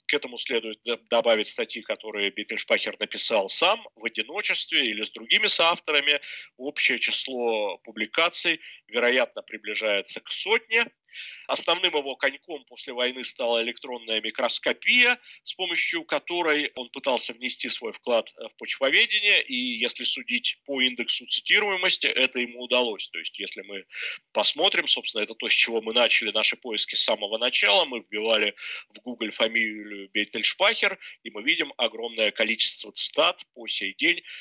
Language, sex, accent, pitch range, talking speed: Russian, male, native, 115-170 Hz, 140 wpm